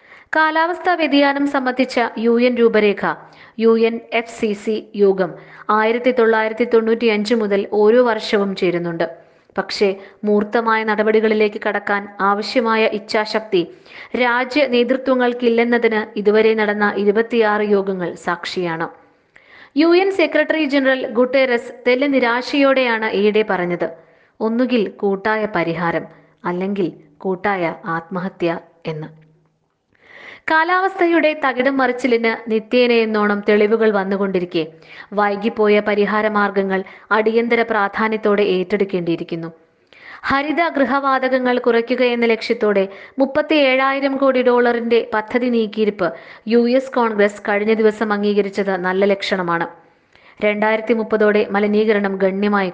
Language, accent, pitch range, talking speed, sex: Malayalam, native, 200-245 Hz, 85 wpm, female